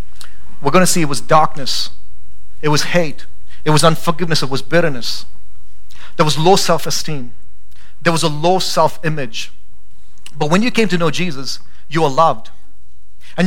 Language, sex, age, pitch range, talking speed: English, male, 30-49, 140-195 Hz, 160 wpm